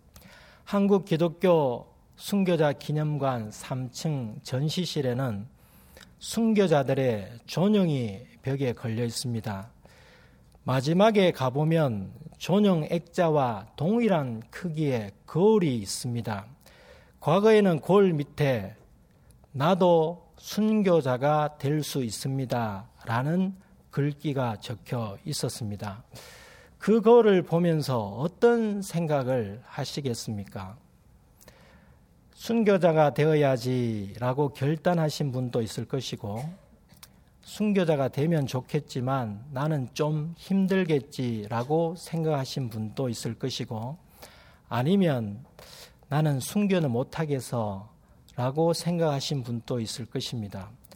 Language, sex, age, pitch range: Korean, male, 40-59, 120-170 Hz